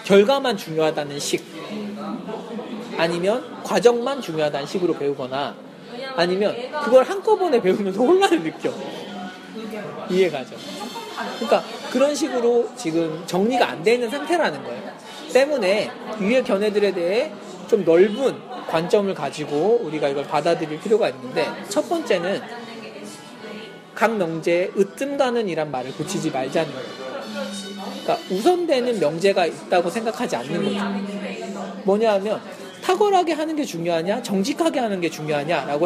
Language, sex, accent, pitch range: Korean, male, native, 175-245 Hz